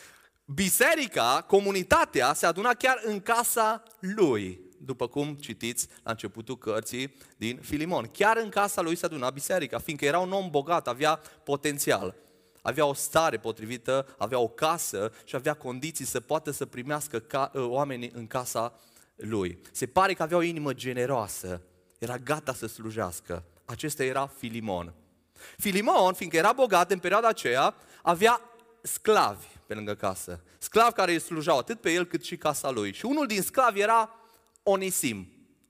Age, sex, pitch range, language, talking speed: 30-49, male, 125-195 Hz, Romanian, 155 wpm